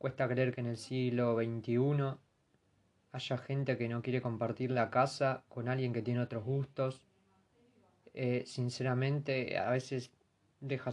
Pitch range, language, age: 115-140 Hz, Spanish, 20-39